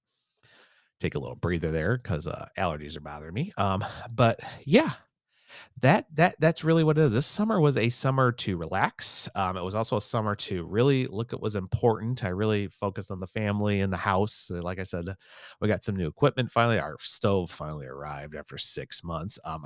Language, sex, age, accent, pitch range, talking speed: English, male, 30-49, American, 90-110 Hz, 200 wpm